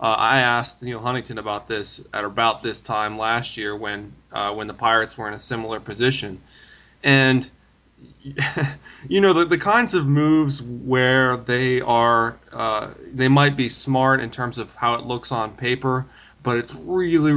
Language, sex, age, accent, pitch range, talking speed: English, male, 20-39, American, 115-140 Hz, 175 wpm